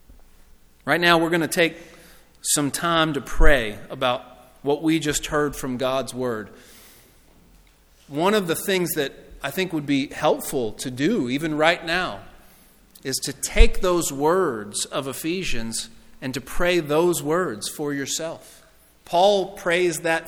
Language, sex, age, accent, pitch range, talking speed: English, male, 40-59, American, 135-170 Hz, 150 wpm